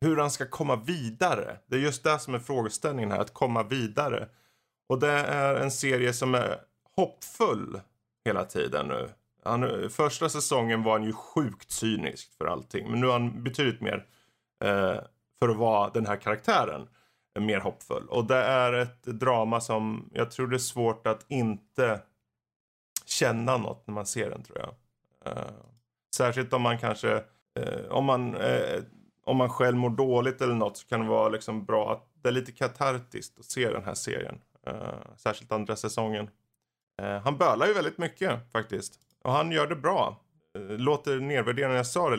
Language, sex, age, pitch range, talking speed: Swedish, male, 30-49, 110-130 Hz, 180 wpm